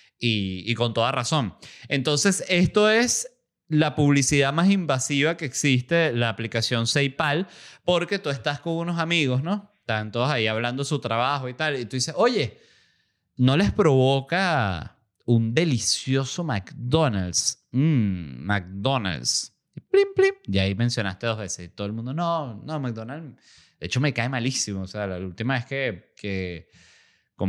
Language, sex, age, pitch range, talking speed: Spanish, male, 30-49, 105-150 Hz, 160 wpm